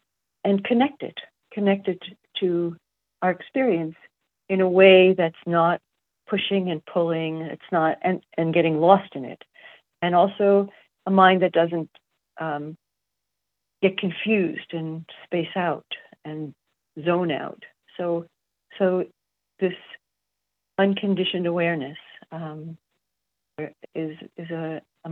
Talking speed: 110 wpm